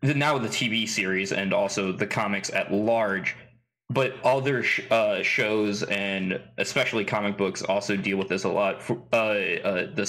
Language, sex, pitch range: English, male, 105-130 Hz